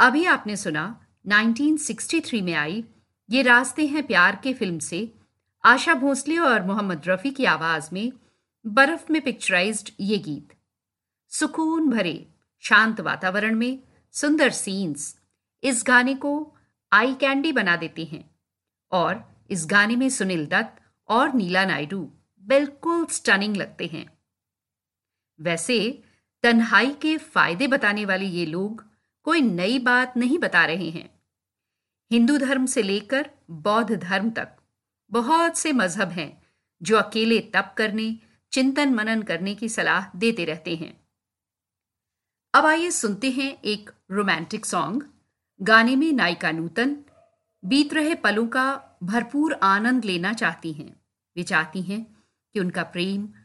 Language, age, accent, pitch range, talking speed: Hindi, 50-69, native, 175-270 Hz, 130 wpm